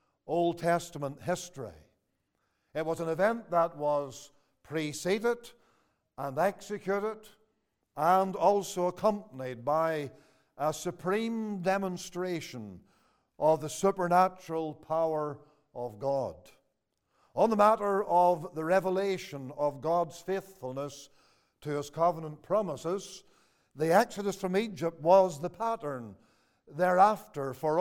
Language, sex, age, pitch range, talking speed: English, male, 50-69, 150-190 Hz, 100 wpm